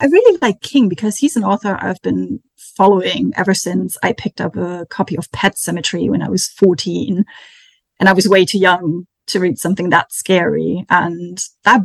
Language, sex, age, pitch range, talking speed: English, female, 30-49, 185-225 Hz, 190 wpm